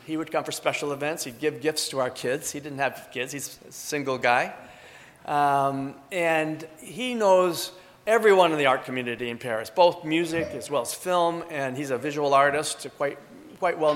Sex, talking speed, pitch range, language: male, 195 wpm, 130-165 Hz, English